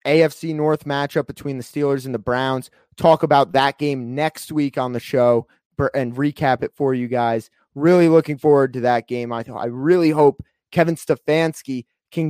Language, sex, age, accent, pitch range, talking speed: English, male, 30-49, American, 120-160 Hz, 180 wpm